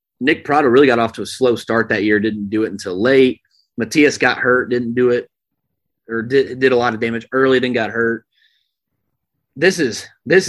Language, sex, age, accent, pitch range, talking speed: English, male, 30-49, American, 110-135 Hz, 205 wpm